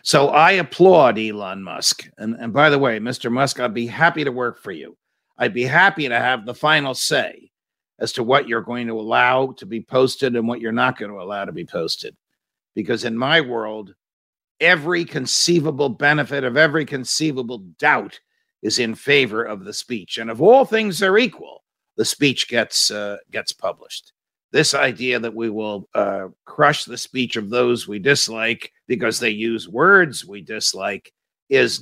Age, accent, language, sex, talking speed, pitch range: 50-69, American, English, male, 180 wpm, 115-140 Hz